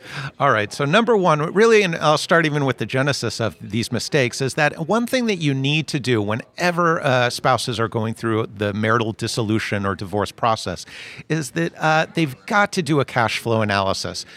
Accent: American